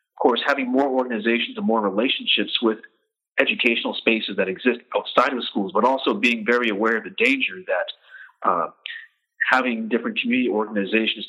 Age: 40-59